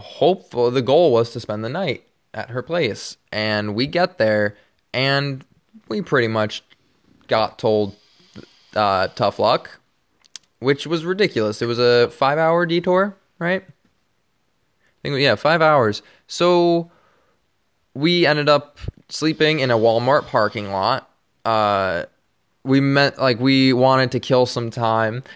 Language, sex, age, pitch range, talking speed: English, male, 20-39, 110-140 Hz, 140 wpm